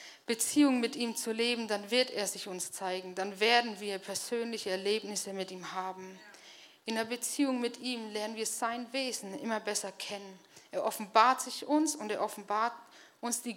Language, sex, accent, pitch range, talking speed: German, female, German, 200-250 Hz, 175 wpm